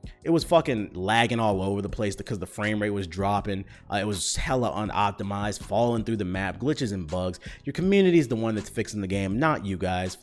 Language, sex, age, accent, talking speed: English, male, 30-49, American, 225 wpm